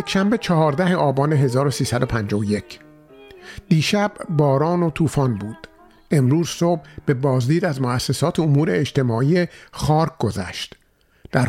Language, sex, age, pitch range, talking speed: Persian, male, 50-69, 125-170 Hz, 110 wpm